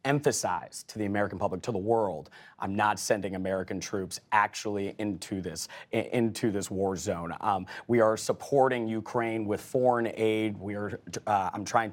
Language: English